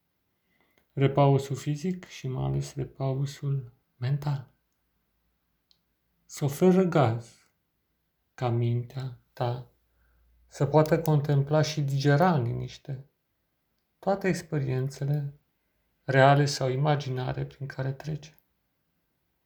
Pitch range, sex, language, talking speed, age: 130-165 Hz, male, Romanian, 95 wpm, 40-59